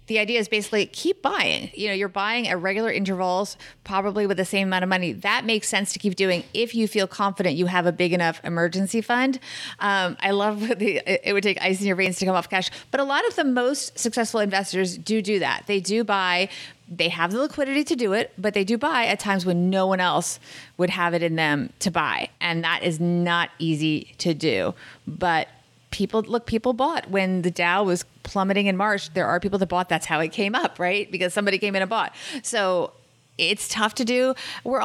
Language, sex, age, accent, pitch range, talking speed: English, female, 30-49, American, 175-210 Hz, 225 wpm